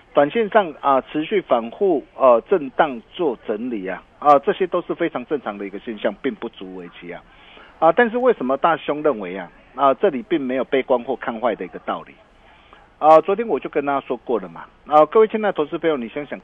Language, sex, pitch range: Chinese, male, 135-200 Hz